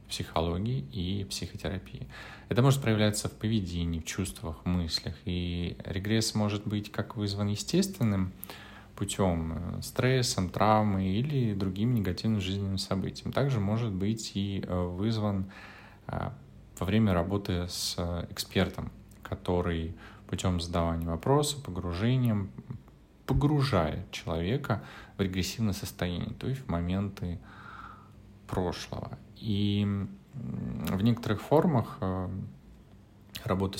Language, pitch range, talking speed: Russian, 95-115 Hz, 100 wpm